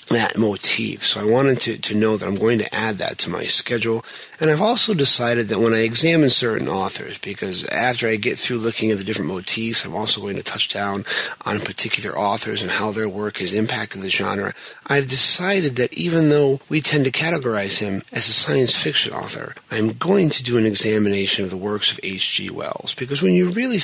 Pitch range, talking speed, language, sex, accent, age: 100-135 Hz, 215 wpm, English, male, American, 30-49